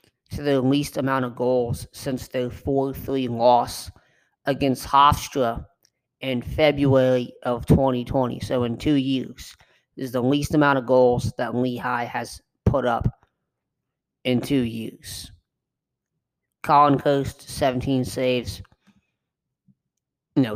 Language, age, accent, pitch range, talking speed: English, 30-49, American, 125-140 Hz, 115 wpm